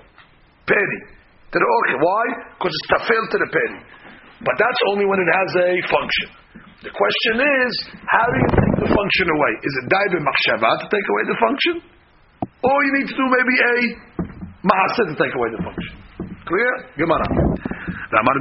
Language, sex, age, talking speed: English, male, 50-69, 165 wpm